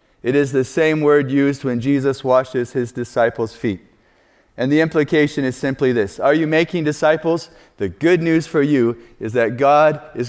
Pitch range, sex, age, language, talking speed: 120-155 Hz, male, 30-49, English, 180 wpm